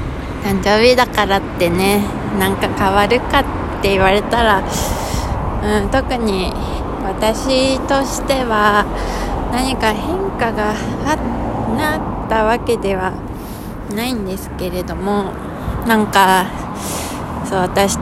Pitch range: 170-220 Hz